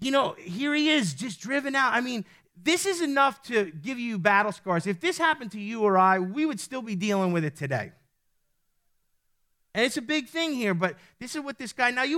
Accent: American